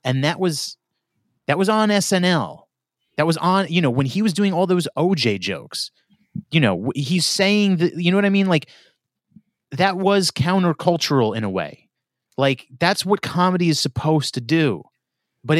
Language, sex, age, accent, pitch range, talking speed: English, male, 30-49, American, 120-165 Hz, 175 wpm